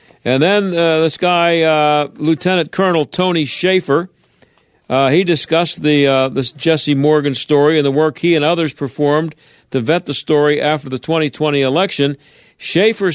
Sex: male